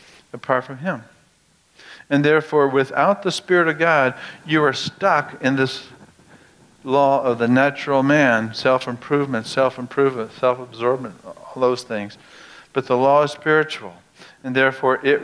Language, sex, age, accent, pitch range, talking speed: English, male, 60-79, American, 125-155 Hz, 135 wpm